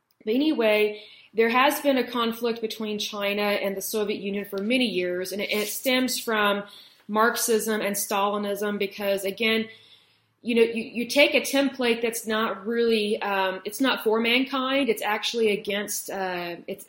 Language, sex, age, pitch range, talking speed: Hindi, female, 30-49, 205-245 Hz, 160 wpm